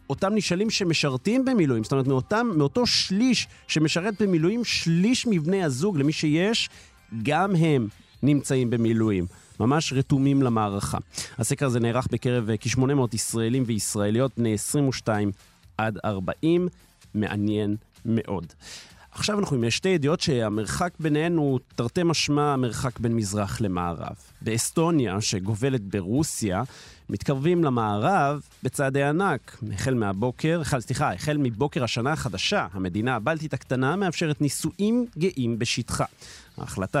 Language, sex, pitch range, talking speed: Hebrew, male, 105-145 Hz, 115 wpm